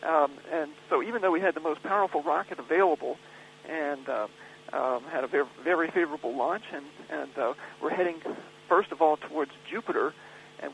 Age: 50-69